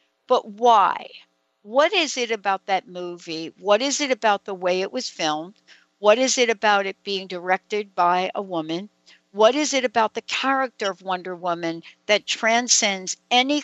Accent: American